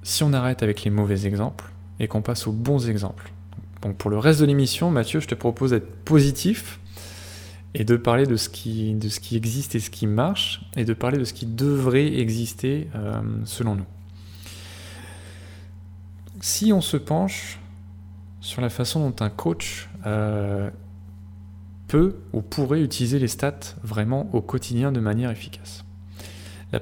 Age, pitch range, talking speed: 20-39, 95-120 Hz, 160 wpm